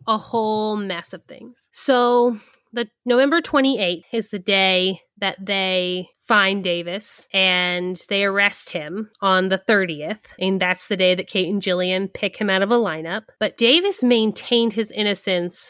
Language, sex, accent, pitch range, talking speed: English, female, American, 185-230 Hz, 160 wpm